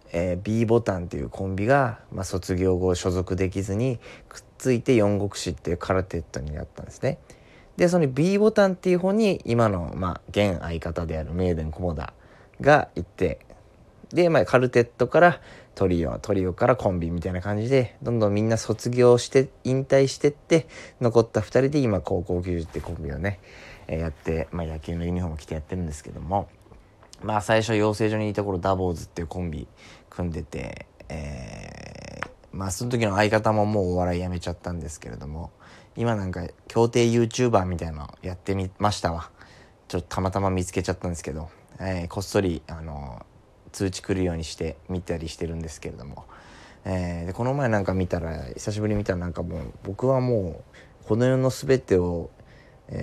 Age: 20-39